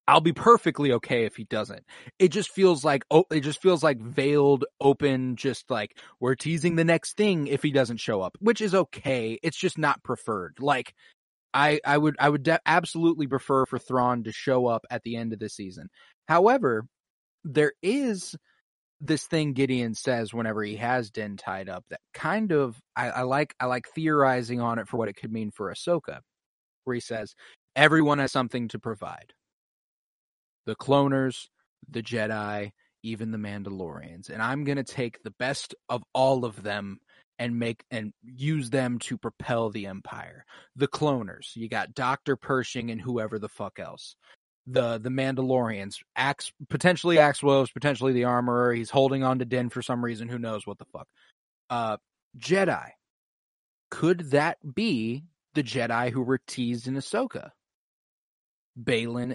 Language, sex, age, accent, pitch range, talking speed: English, male, 20-39, American, 115-150 Hz, 170 wpm